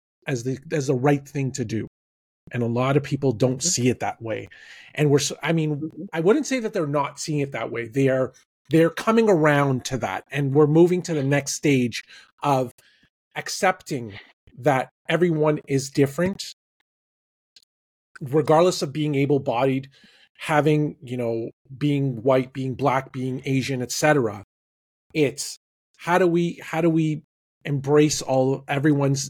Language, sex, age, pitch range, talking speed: English, male, 30-49, 130-160 Hz, 160 wpm